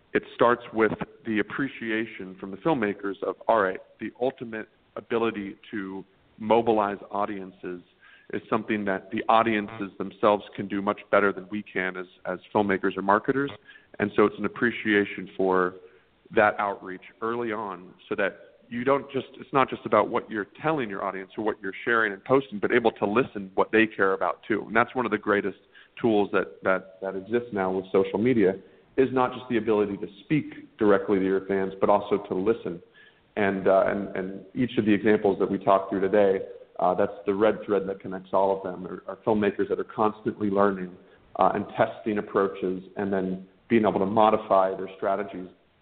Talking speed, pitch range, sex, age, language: 190 wpm, 95-115 Hz, male, 40-59, English